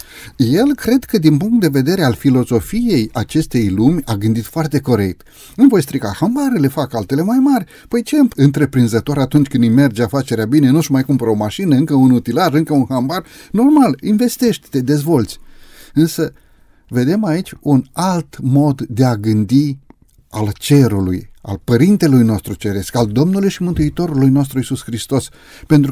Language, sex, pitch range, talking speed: Romanian, male, 110-155 Hz, 160 wpm